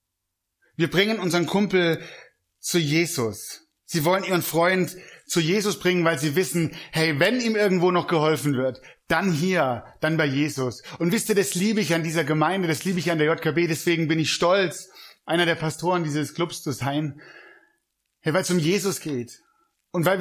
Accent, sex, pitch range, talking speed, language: German, male, 145-185 Hz, 185 wpm, German